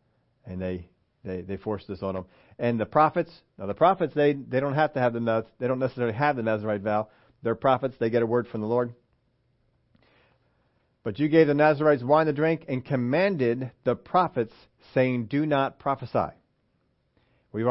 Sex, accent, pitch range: male, American, 120-160 Hz